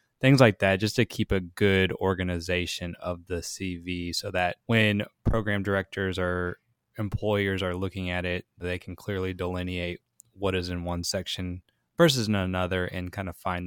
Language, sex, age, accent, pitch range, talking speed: English, male, 20-39, American, 90-105 Hz, 170 wpm